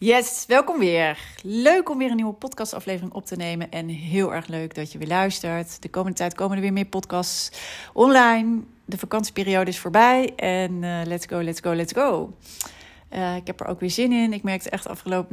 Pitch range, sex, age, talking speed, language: 160-195 Hz, female, 30-49, 210 wpm, Dutch